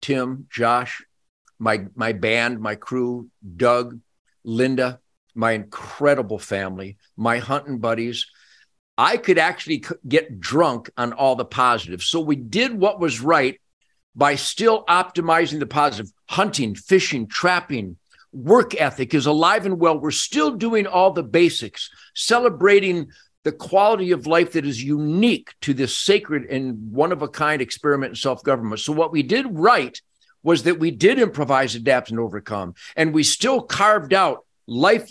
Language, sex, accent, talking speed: English, male, American, 150 wpm